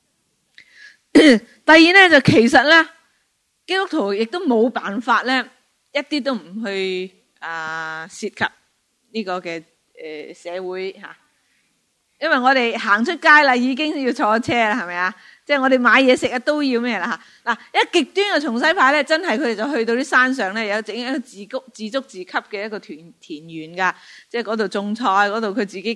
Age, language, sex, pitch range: 20-39, Chinese, female, 205-275 Hz